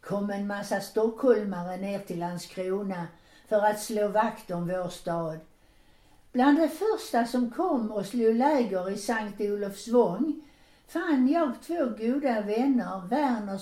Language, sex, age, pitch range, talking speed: Swedish, female, 60-79, 200-280 Hz, 135 wpm